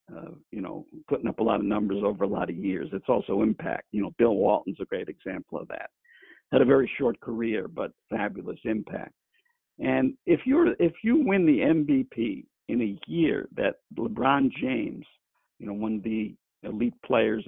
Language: English